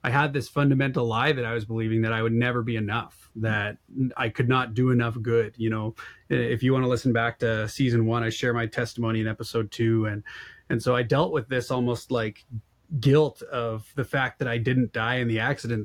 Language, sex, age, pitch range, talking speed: English, male, 20-39, 115-140 Hz, 225 wpm